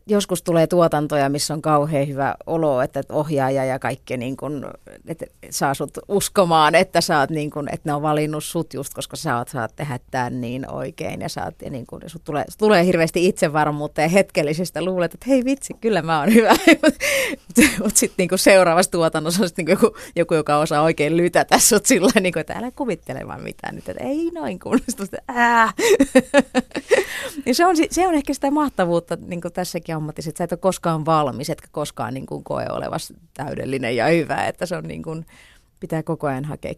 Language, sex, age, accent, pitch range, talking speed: Finnish, female, 30-49, native, 150-210 Hz, 185 wpm